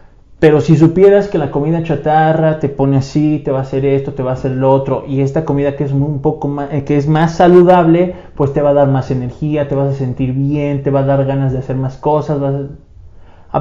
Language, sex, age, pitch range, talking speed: Spanish, male, 20-39, 130-160 Hz, 255 wpm